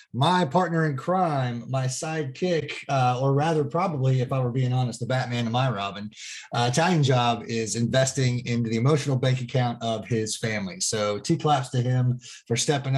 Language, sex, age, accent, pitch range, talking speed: English, male, 30-49, American, 120-140 Hz, 185 wpm